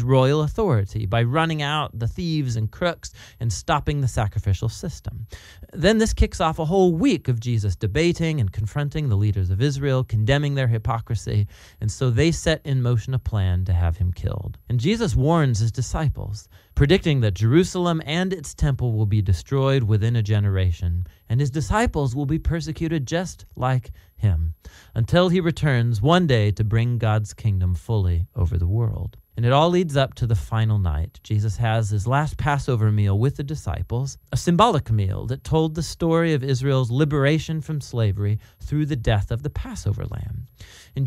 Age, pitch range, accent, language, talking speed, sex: 30-49, 105-150 Hz, American, English, 180 wpm, male